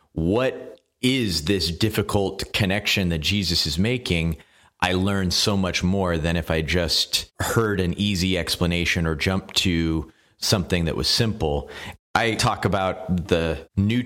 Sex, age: male, 30-49